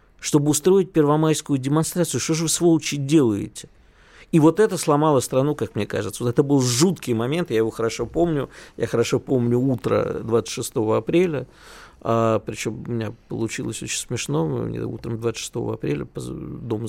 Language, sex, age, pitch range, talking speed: Russian, male, 50-69, 115-150 Hz, 160 wpm